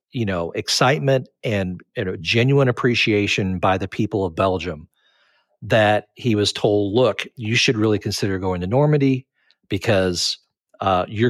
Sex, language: male, English